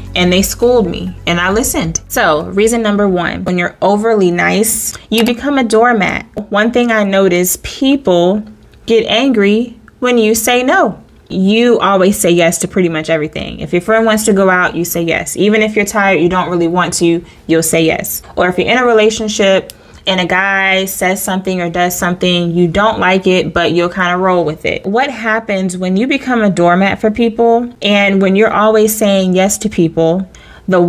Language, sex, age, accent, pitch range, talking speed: English, female, 20-39, American, 175-220 Hz, 200 wpm